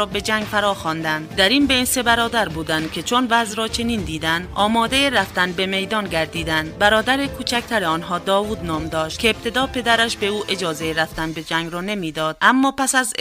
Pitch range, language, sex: 160-225 Hz, Persian, female